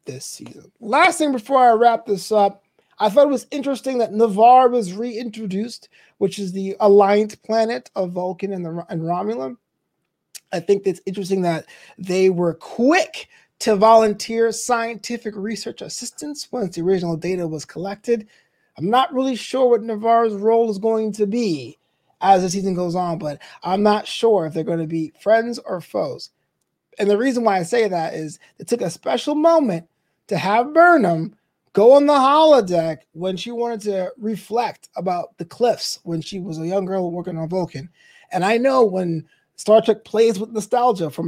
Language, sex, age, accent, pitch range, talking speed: English, male, 20-39, American, 175-230 Hz, 180 wpm